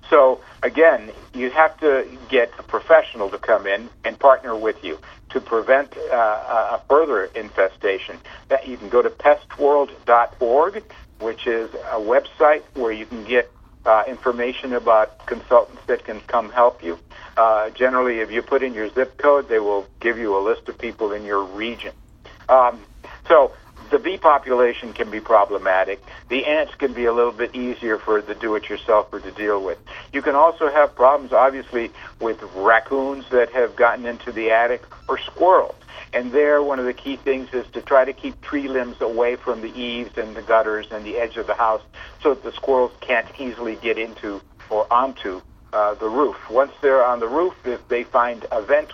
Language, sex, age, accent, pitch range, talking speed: English, male, 60-79, American, 110-135 Hz, 185 wpm